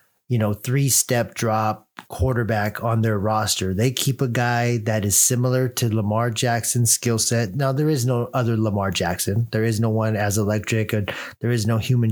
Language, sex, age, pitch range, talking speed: English, male, 30-49, 110-130 Hz, 185 wpm